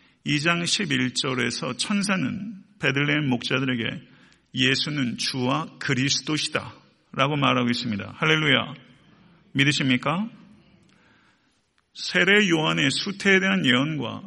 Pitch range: 130-190 Hz